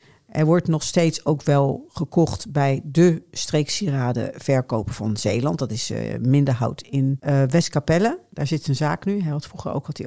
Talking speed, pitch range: 185 wpm, 130-170 Hz